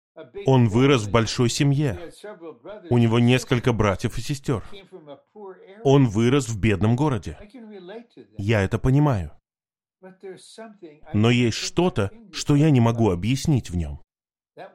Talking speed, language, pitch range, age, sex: 120 wpm, Russian, 110-145 Hz, 20-39, male